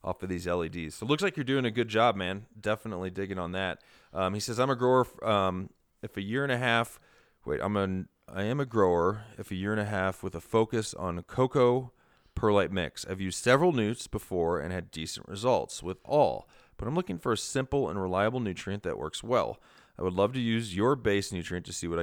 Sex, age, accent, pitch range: male, 30-49, American, 90-115 Hz